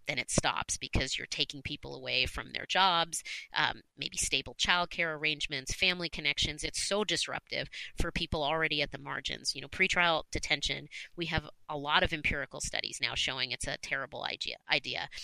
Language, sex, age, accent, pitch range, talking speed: English, female, 30-49, American, 145-165 Hz, 175 wpm